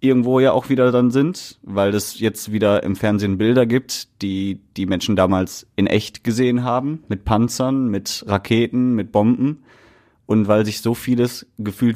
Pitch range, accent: 105-130 Hz, German